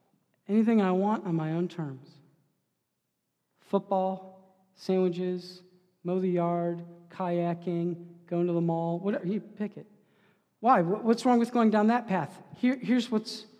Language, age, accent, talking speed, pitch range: English, 40-59, American, 135 wpm, 165-200 Hz